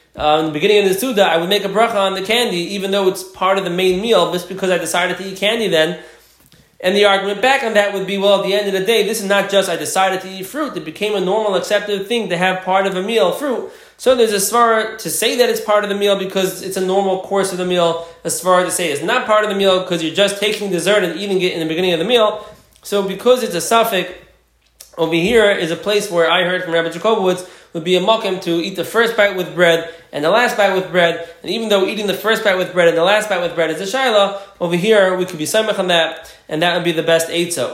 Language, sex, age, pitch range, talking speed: English, male, 20-39, 170-205 Hz, 285 wpm